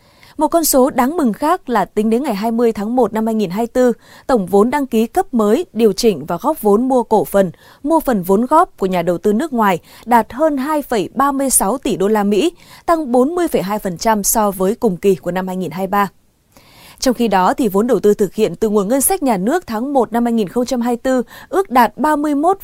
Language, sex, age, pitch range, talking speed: Vietnamese, female, 20-39, 200-260 Hz, 200 wpm